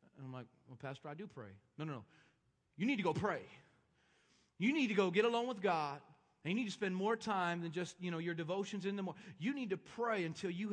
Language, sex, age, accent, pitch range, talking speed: English, male, 30-49, American, 180-245 Hz, 250 wpm